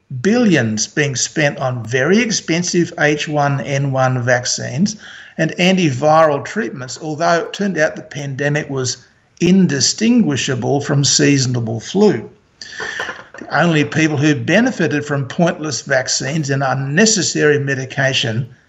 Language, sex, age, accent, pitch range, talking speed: English, male, 60-79, Australian, 135-180 Hz, 105 wpm